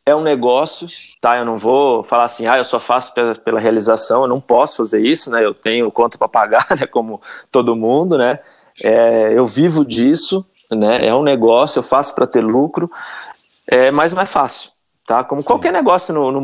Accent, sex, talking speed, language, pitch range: Brazilian, male, 205 wpm, Portuguese, 120-155 Hz